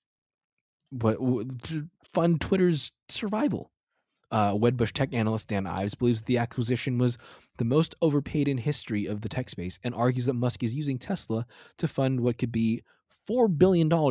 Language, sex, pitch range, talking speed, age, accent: English, male, 100-125 Hz, 160 wpm, 20-39, American